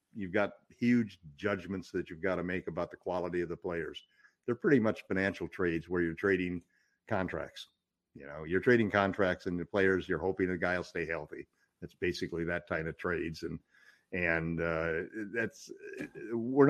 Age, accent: 50-69, American